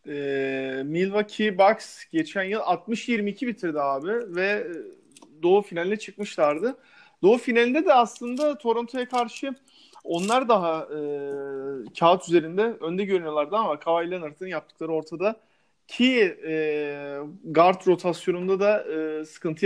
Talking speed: 110 wpm